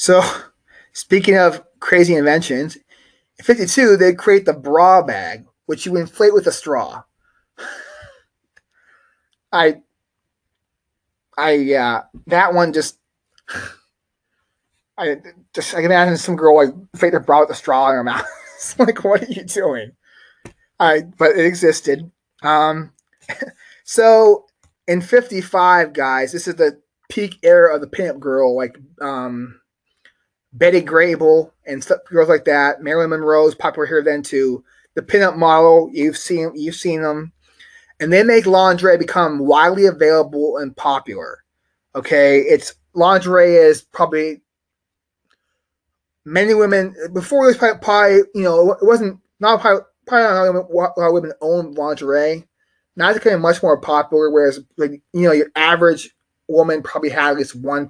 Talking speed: 140 wpm